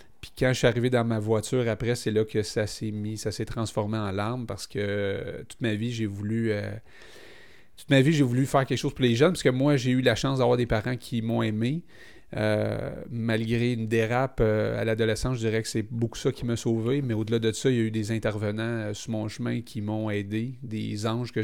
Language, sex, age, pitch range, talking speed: French, male, 30-49, 110-125 Hz, 250 wpm